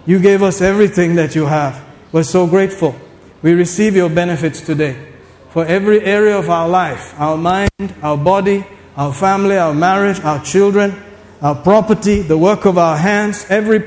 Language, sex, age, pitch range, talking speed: English, male, 50-69, 130-190 Hz, 170 wpm